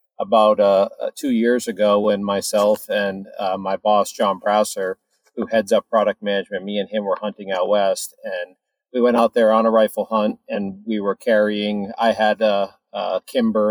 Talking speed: 190 wpm